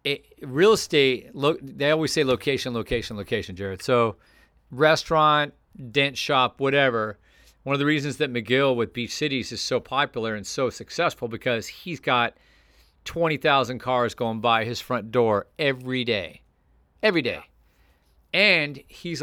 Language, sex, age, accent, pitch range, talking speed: English, male, 50-69, American, 100-135 Hz, 145 wpm